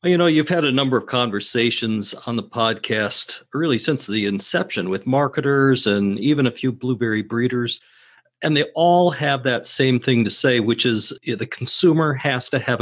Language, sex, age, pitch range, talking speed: English, male, 50-69, 115-145 Hz, 185 wpm